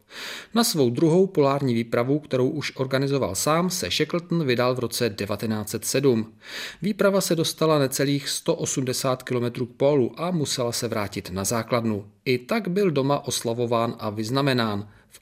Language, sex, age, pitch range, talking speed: Czech, male, 40-59, 115-150 Hz, 145 wpm